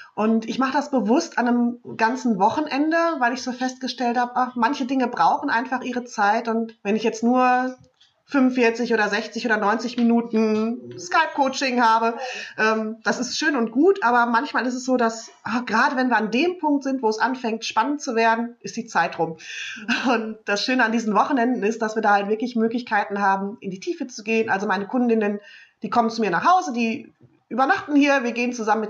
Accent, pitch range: German, 210-255 Hz